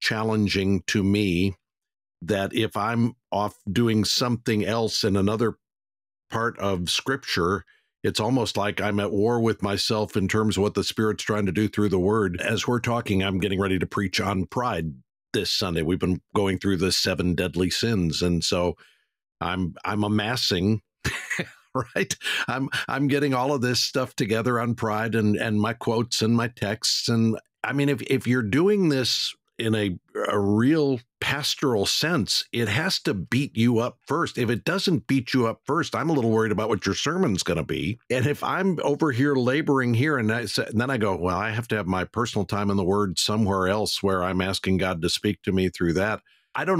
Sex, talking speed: male, 200 wpm